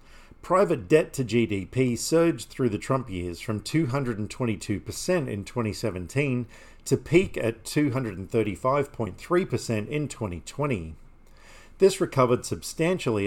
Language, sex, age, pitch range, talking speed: English, male, 50-69, 100-135 Hz, 100 wpm